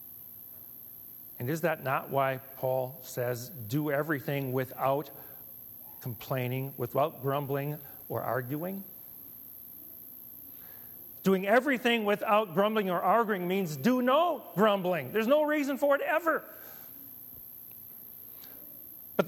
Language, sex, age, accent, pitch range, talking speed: English, male, 40-59, American, 145-235 Hz, 100 wpm